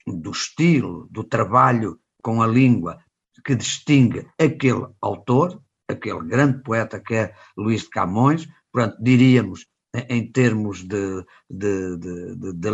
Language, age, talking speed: Portuguese, 50-69, 130 wpm